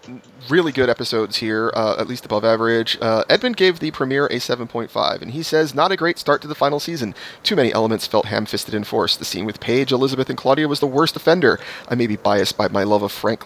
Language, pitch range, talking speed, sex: English, 115-145 Hz, 240 wpm, male